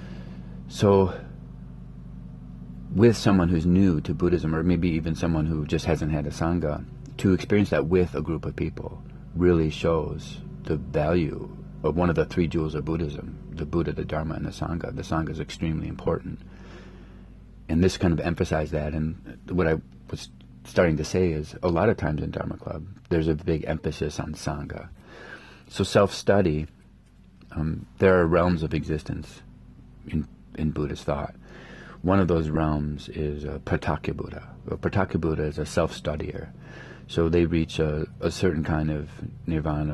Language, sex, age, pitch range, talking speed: English, male, 40-59, 75-90 Hz, 165 wpm